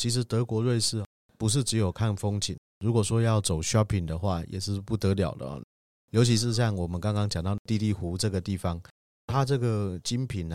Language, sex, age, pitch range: Chinese, male, 30-49, 90-115 Hz